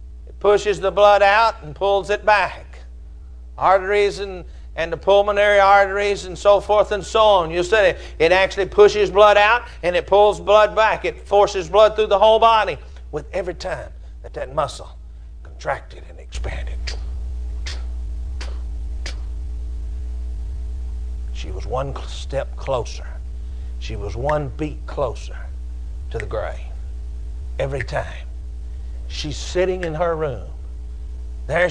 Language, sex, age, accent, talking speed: English, male, 60-79, American, 130 wpm